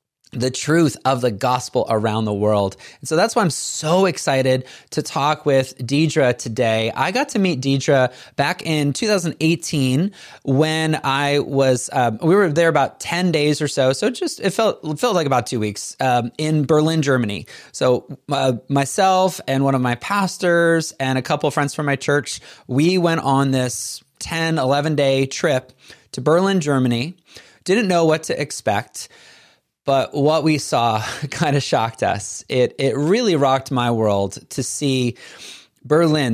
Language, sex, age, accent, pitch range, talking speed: English, male, 20-39, American, 125-160 Hz, 170 wpm